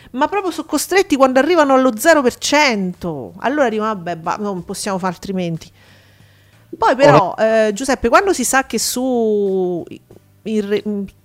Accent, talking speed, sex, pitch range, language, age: native, 140 wpm, female, 215-290 Hz, Italian, 40-59